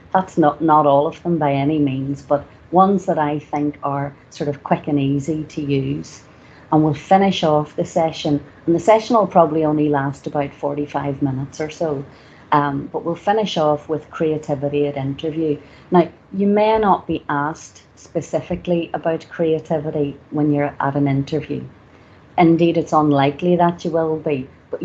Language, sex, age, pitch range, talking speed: English, female, 40-59, 145-165 Hz, 170 wpm